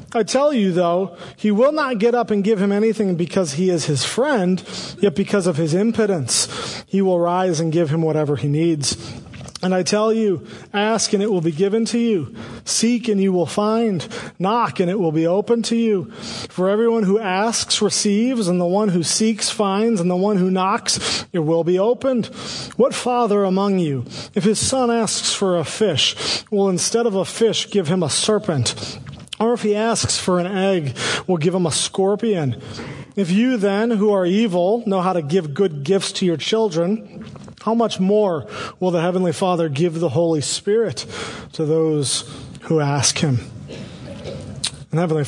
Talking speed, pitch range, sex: 190 wpm, 155-205 Hz, male